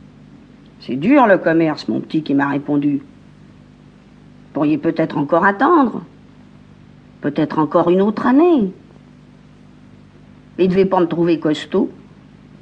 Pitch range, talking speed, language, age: 165-200 Hz, 125 wpm, French, 50-69